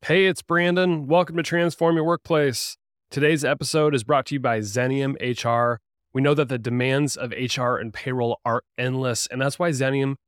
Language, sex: English, male